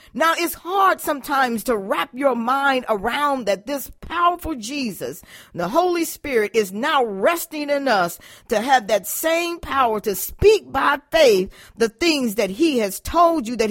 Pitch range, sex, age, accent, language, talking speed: 220-295 Hz, female, 40-59, American, English, 165 wpm